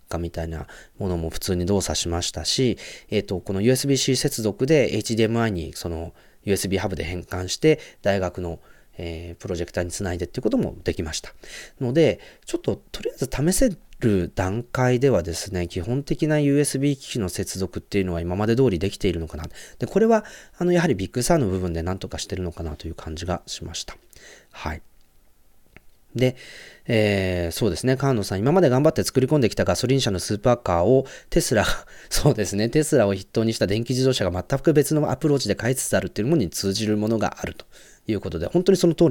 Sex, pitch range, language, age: male, 90-130 Hz, Japanese, 30-49